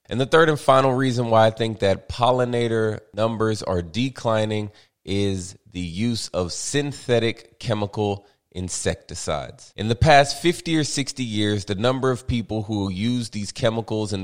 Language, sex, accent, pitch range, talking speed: English, male, American, 95-125 Hz, 155 wpm